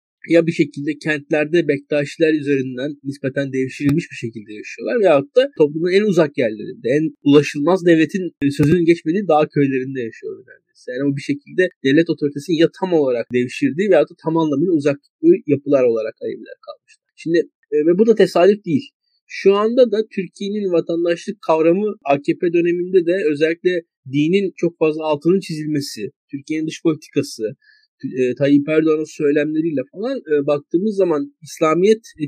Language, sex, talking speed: Turkish, male, 145 wpm